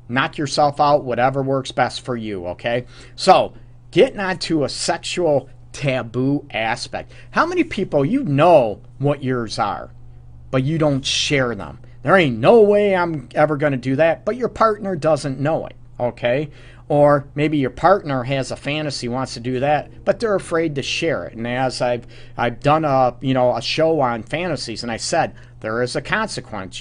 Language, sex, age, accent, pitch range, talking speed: English, male, 40-59, American, 120-150 Hz, 185 wpm